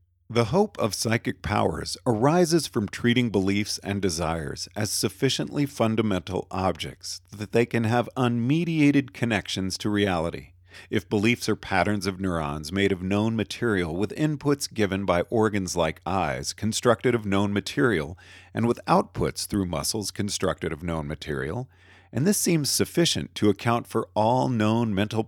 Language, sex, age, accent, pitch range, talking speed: English, male, 40-59, American, 90-115 Hz, 150 wpm